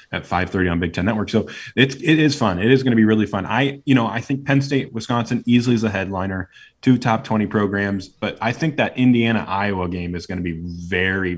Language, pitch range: English, 95-120 Hz